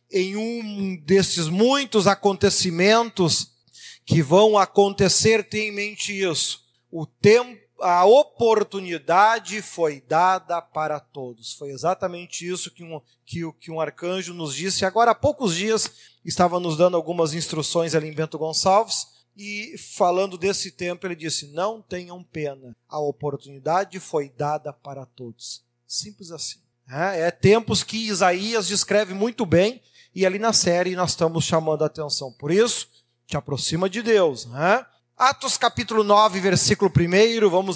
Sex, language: male, Portuguese